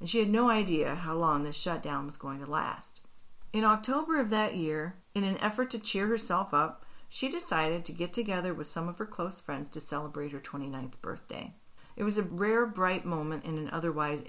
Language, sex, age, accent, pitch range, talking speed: English, female, 40-59, American, 155-215 Hz, 210 wpm